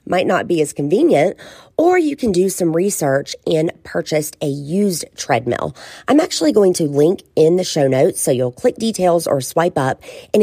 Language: English